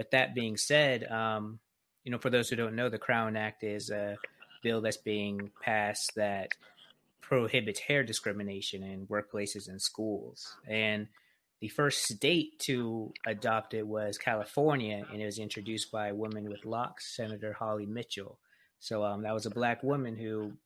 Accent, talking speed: American, 170 wpm